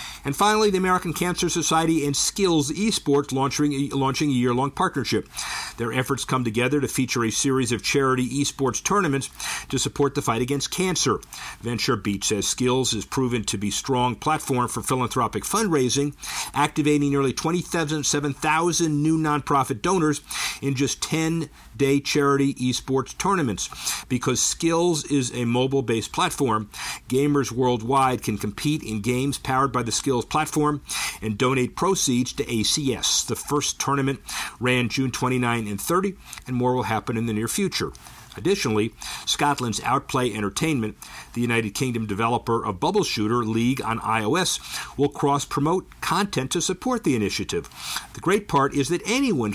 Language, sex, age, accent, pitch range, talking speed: English, male, 50-69, American, 120-150 Hz, 150 wpm